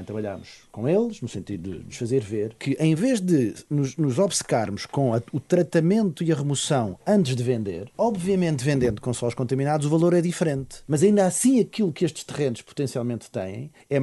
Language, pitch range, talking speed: Portuguese, 115-170 Hz, 185 wpm